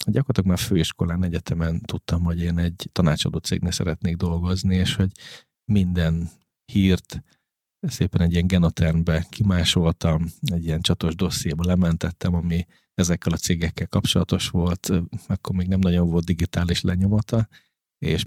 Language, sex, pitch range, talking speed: Hungarian, male, 85-95 Hz, 130 wpm